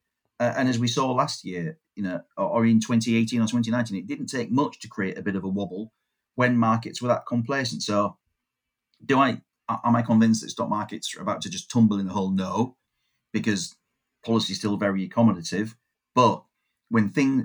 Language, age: English, 40-59